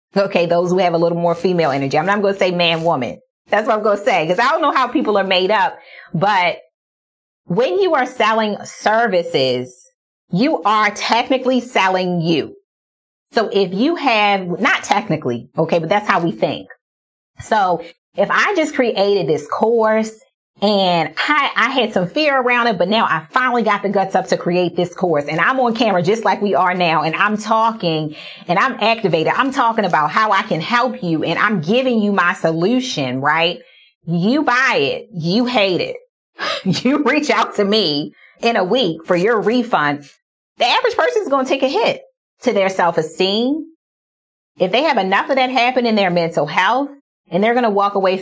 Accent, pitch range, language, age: American, 175-245 Hz, English, 30-49